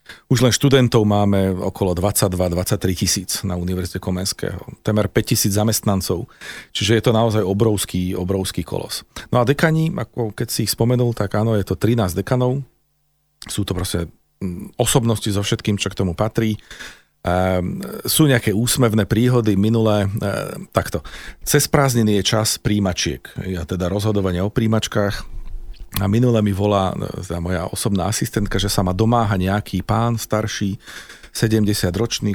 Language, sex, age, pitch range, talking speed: Slovak, male, 40-59, 95-120 Hz, 140 wpm